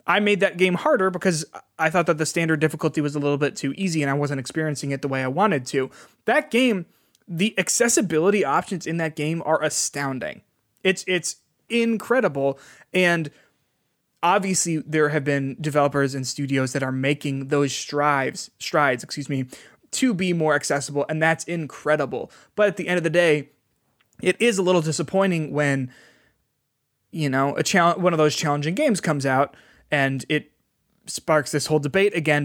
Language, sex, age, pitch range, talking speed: English, male, 20-39, 140-175 Hz, 175 wpm